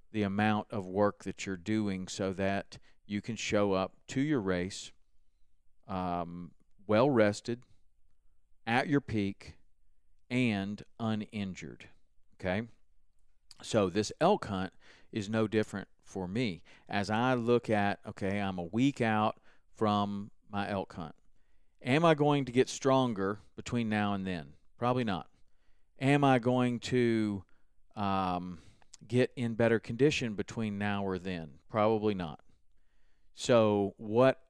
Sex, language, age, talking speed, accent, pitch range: male, English, 40-59, 130 wpm, American, 95-115 Hz